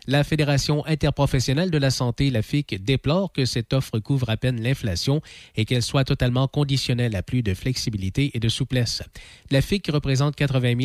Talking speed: 185 wpm